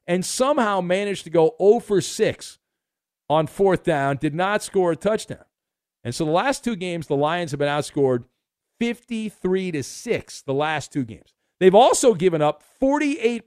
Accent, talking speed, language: American, 165 wpm, English